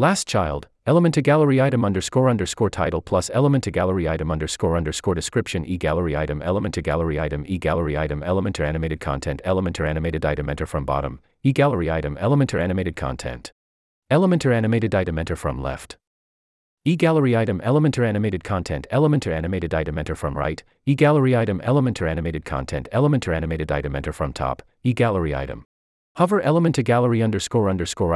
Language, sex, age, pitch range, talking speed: English, male, 40-59, 75-120 Hz, 190 wpm